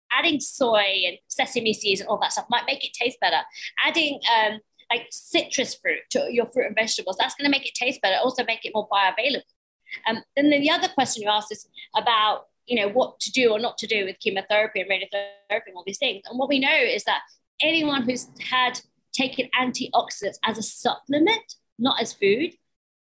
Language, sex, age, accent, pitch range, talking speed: English, female, 30-49, British, 205-265 Hz, 210 wpm